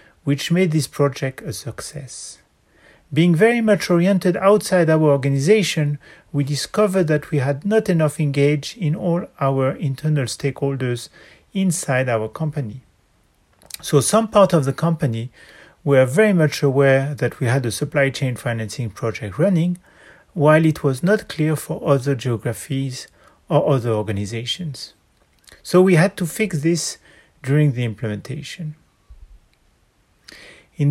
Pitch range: 135-175 Hz